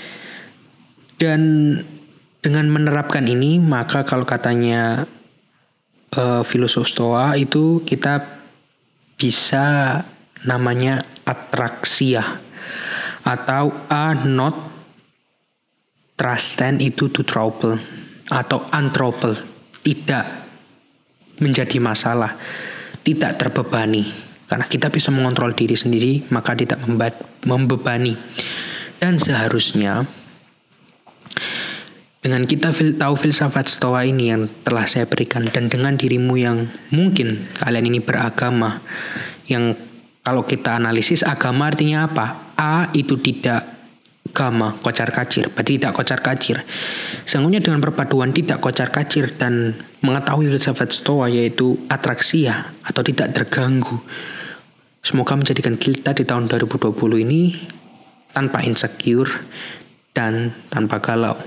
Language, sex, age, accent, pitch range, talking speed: Indonesian, male, 20-39, native, 120-150 Hz, 100 wpm